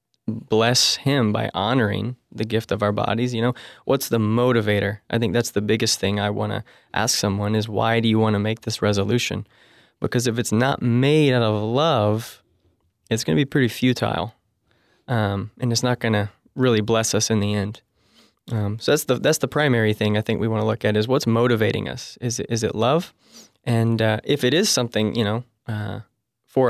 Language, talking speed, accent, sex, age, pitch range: English, 210 wpm, American, male, 20-39, 105-120 Hz